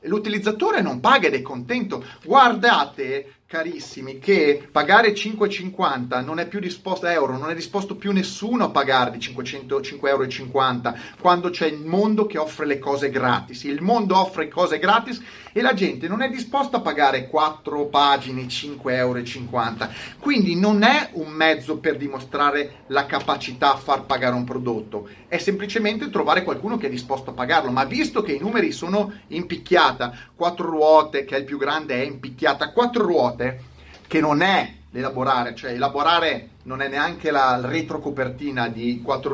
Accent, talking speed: native, 165 wpm